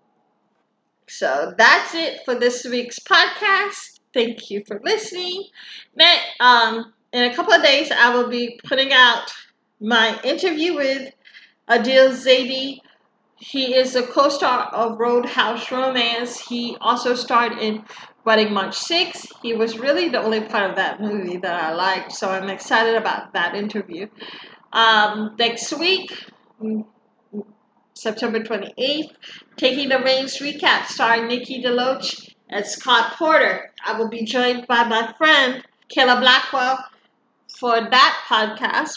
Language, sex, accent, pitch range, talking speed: English, female, American, 220-275 Hz, 130 wpm